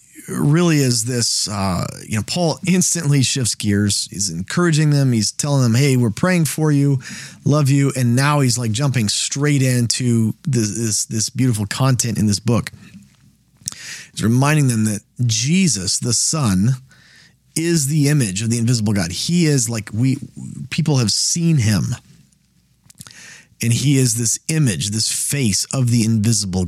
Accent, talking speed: American, 155 wpm